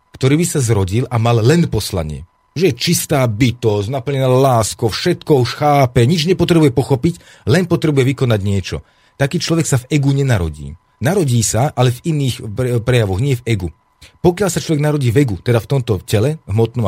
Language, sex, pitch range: Slovak, male, 110-150 Hz